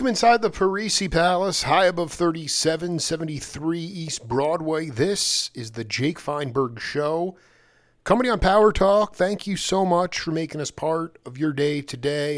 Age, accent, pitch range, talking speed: 40-59, American, 130-160 Hz, 155 wpm